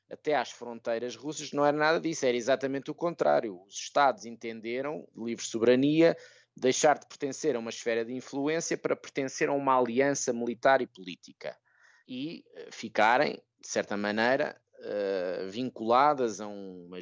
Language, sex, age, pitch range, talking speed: Portuguese, male, 20-39, 115-145 Hz, 150 wpm